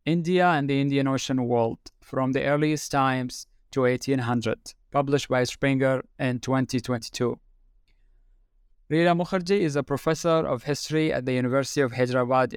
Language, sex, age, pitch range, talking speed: English, male, 20-39, 125-145 Hz, 140 wpm